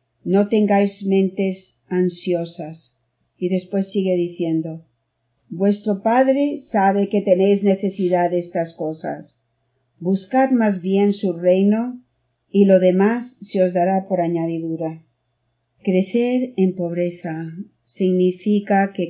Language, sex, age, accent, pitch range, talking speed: Spanish, female, 50-69, Spanish, 165-200 Hz, 110 wpm